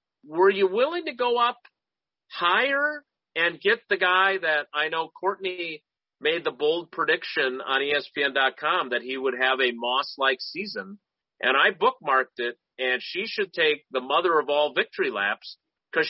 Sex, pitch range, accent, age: male, 130-190 Hz, American, 40-59